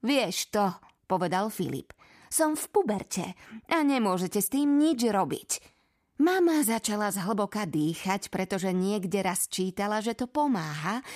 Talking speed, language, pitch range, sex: 130 wpm, Slovak, 185-270 Hz, female